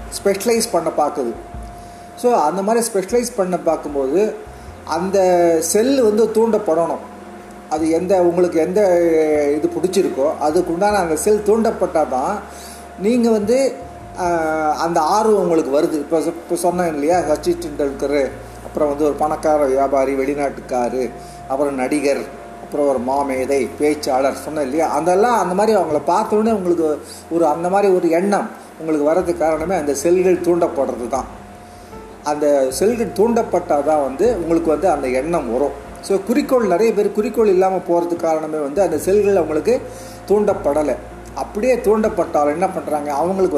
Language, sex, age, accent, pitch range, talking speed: Tamil, male, 40-59, native, 150-195 Hz, 130 wpm